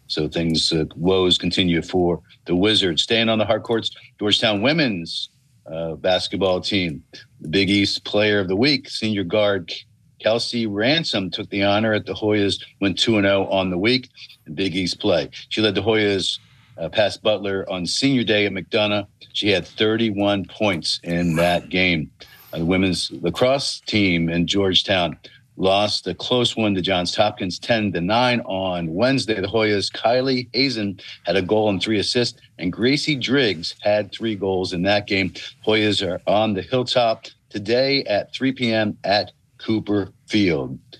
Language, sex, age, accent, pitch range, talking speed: English, male, 50-69, American, 95-115 Hz, 165 wpm